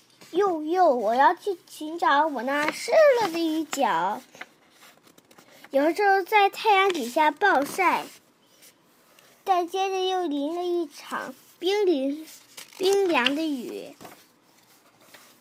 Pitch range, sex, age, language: 290-360 Hz, female, 10-29, Chinese